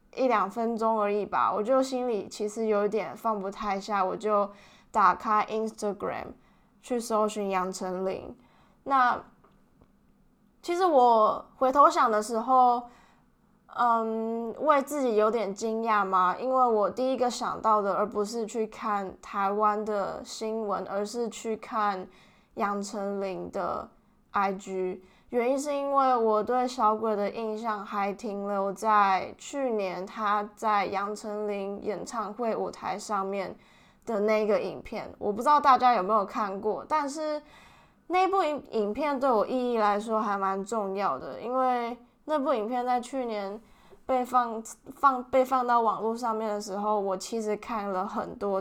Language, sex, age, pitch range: Chinese, female, 10-29, 200-240 Hz